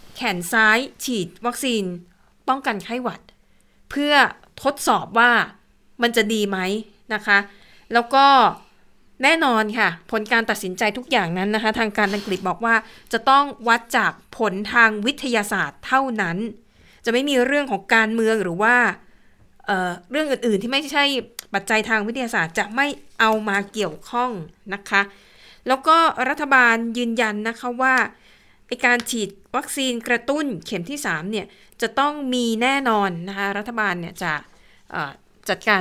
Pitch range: 200-250 Hz